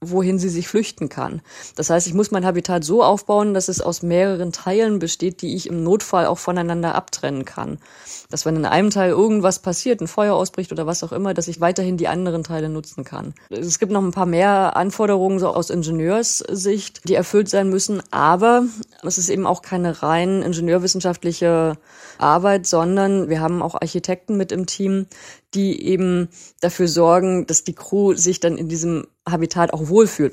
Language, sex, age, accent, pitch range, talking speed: German, female, 20-39, German, 165-195 Hz, 185 wpm